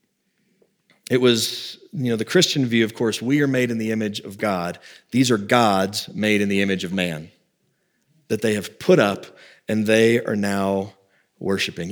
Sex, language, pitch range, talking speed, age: male, English, 110-150 Hz, 180 wpm, 30-49